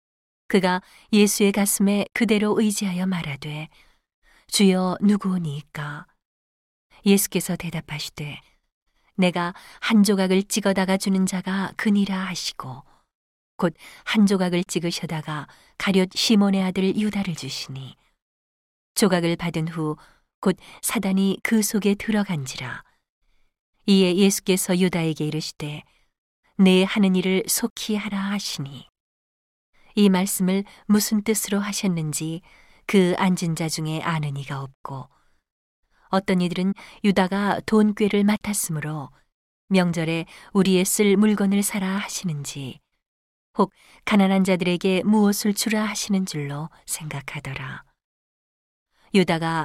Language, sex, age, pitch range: Korean, female, 40-59, 155-200 Hz